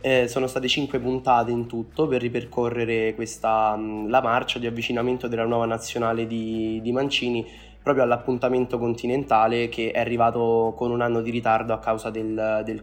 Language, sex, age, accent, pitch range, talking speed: Italian, male, 20-39, native, 115-125 Hz, 165 wpm